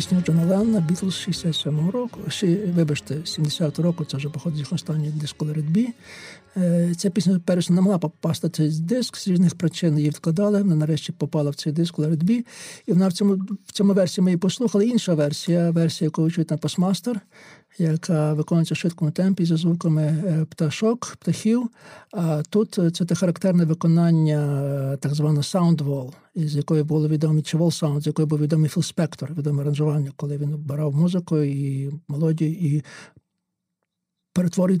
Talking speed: 155 wpm